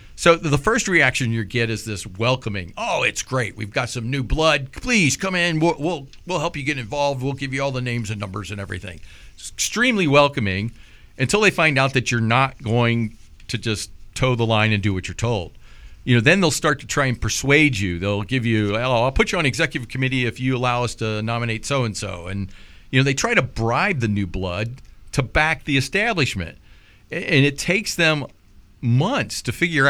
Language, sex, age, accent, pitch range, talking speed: English, male, 50-69, American, 105-145 Hz, 215 wpm